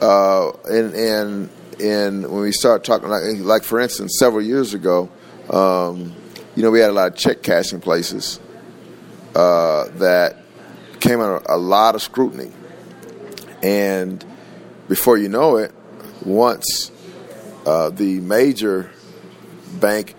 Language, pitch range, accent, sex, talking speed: English, 95-115 Hz, American, male, 130 wpm